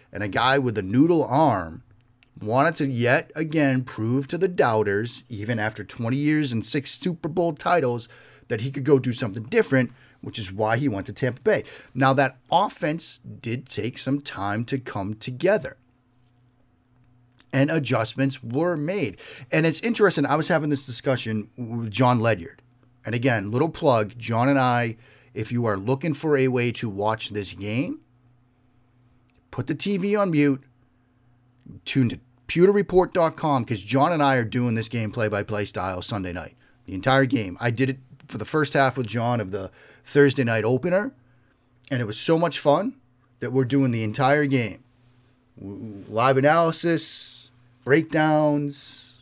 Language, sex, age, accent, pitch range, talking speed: English, male, 30-49, American, 120-140 Hz, 165 wpm